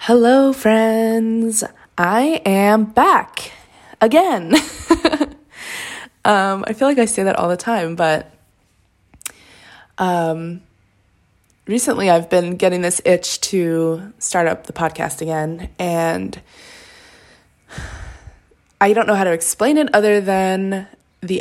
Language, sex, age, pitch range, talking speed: English, female, 20-39, 155-205 Hz, 115 wpm